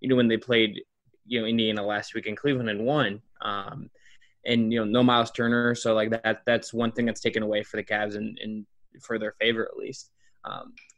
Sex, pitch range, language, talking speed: male, 115-140 Hz, English, 230 wpm